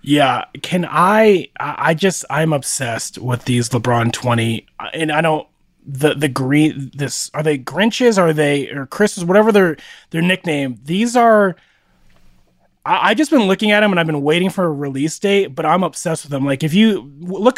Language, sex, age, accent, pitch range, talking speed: English, male, 30-49, American, 145-190 Hz, 190 wpm